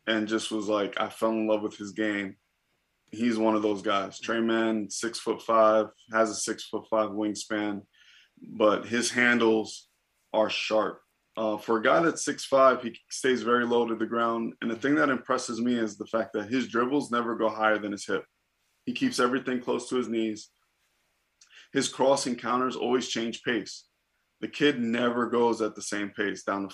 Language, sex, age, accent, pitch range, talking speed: English, male, 20-39, American, 110-125 Hz, 195 wpm